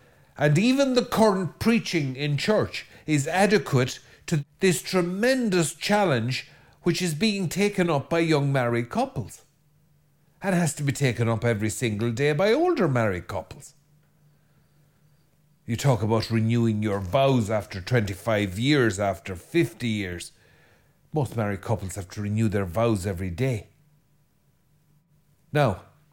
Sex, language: male, English